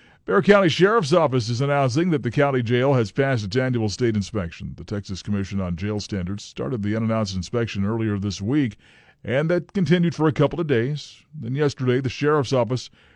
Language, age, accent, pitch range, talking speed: English, 50-69, American, 105-140 Hz, 190 wpm